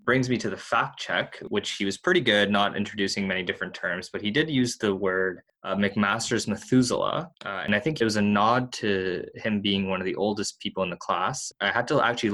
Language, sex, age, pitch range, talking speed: English, male, 20-39, 95-110 Hz, 235 wpm